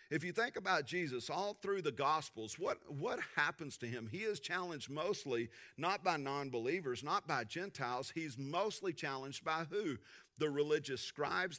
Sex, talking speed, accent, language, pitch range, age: male, 170 wpm, American, English, 115-155 Hz, 40-59